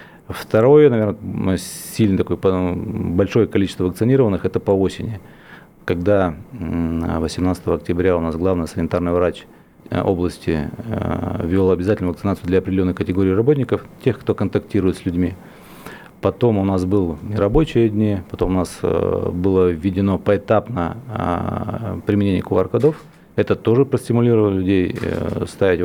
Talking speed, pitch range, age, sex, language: 110 wpm, 95-120 Hz, 40-59, male, Russian